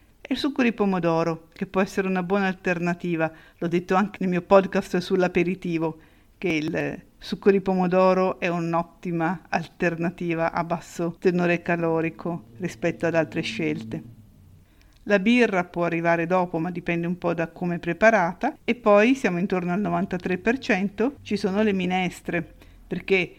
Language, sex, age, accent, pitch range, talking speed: Italian, female, 50-69, native, 170-205 Hz, 145 wpm